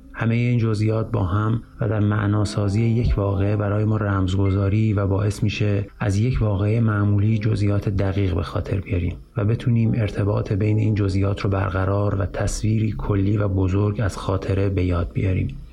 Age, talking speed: 30-49, 165 wpm